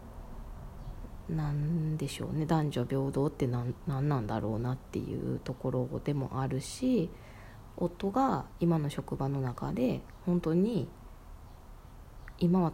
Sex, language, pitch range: female, Japanese, 125-160 Hz